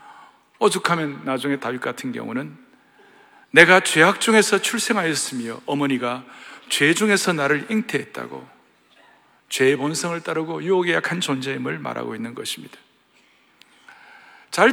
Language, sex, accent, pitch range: Korean, male, native, 170-250 Hz